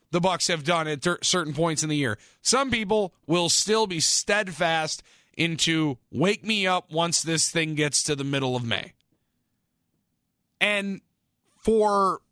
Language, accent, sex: English, American, male